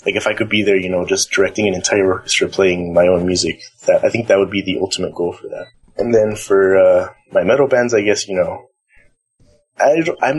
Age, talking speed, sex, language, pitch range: 20-39, 235 wpm, male, English, 95-130 Hz